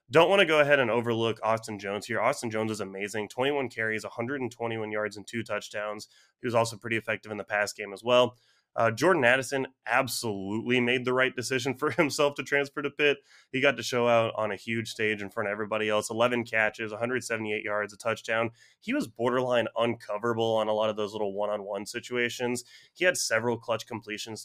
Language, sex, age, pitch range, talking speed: English, male, 20-39, 105-130 Hz, 205 wpm